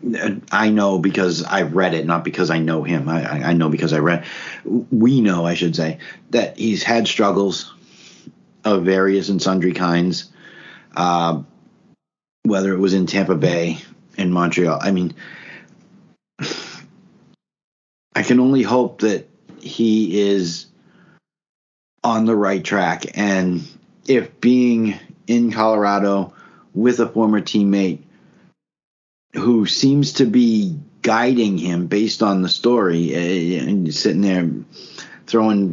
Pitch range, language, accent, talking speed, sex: 85-110 Hz, English, American, 130 wpm, male